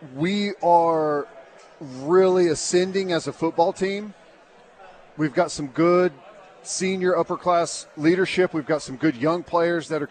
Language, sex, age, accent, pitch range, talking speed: English, male, 40-59, American, 150-180 Hz, 140 wpm